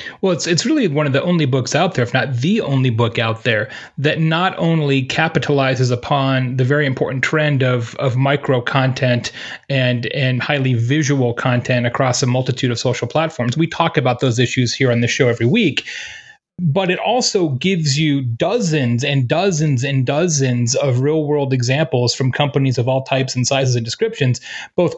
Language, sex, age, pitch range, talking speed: English, male, 30-49, 130-165 Hz, 185 wpm